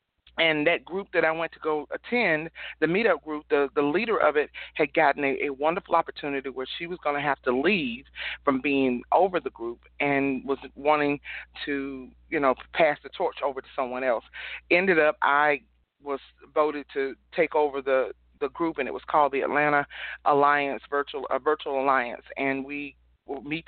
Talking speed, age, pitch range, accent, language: 185 wpm, 40-59, 135-155 Hz, American, English